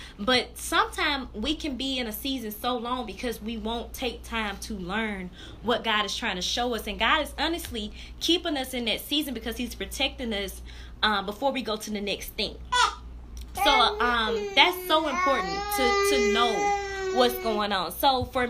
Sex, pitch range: female, 190-275 Hz